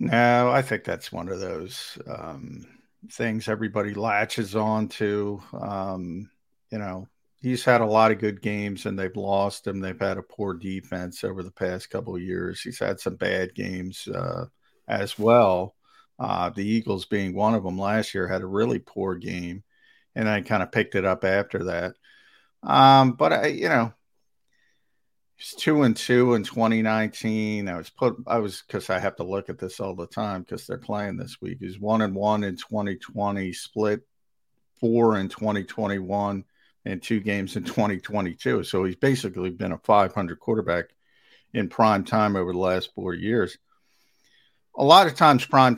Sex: male